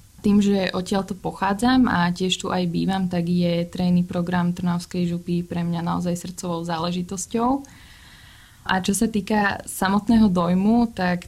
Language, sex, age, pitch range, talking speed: Slovak, female, 20-39, 175-200 Hz, 145 wpm